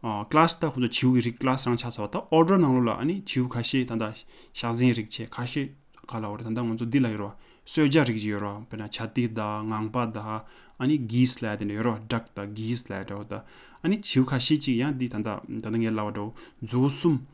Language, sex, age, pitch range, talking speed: English, male, 20-39, 110-140 Hz, 195 wpm